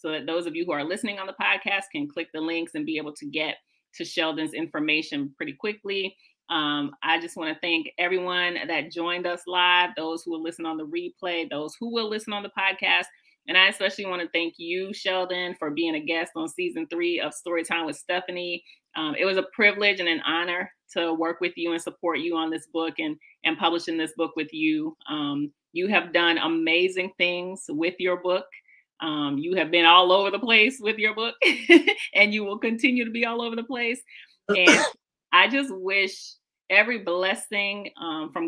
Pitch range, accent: 165-195 Hz, American